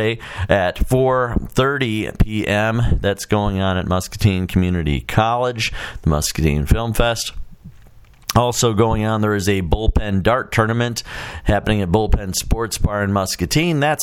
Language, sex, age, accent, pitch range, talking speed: English, male, 40-59, American, 90-115 Hz, 135 wpm